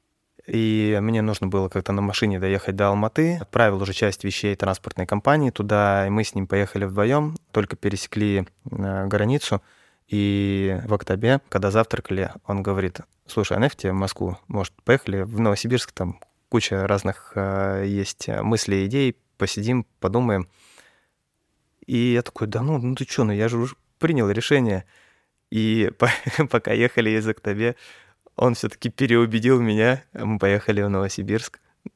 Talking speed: 145 wpm